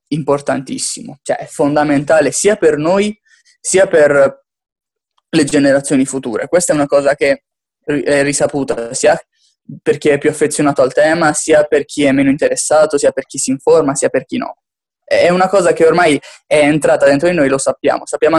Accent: native